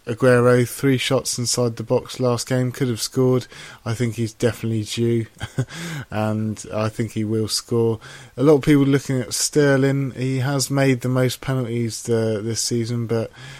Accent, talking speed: British, 170 wpm